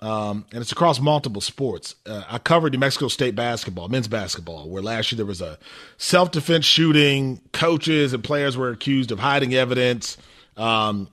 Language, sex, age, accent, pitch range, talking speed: English, male, 30-49, American, 120-160 Hz, 175 wpm